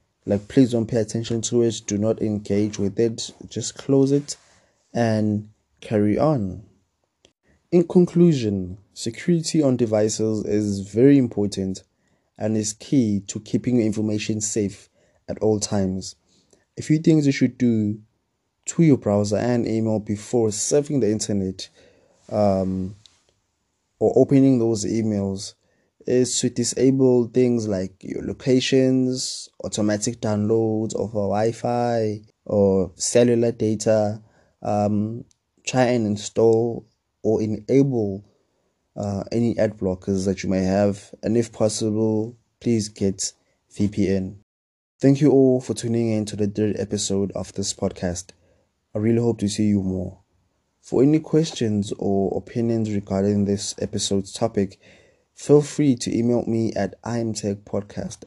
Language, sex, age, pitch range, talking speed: English, male, 20-39, 100-115 Hz, 130 wpm